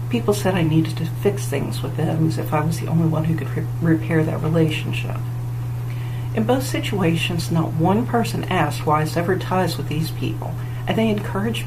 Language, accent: English, American